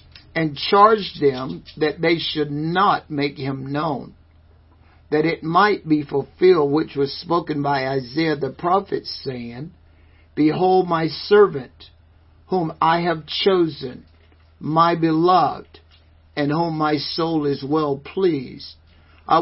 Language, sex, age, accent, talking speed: English, male, 60-79, American, 125 wpm